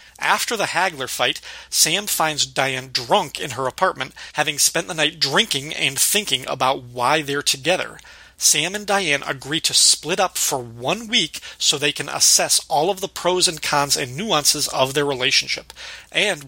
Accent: American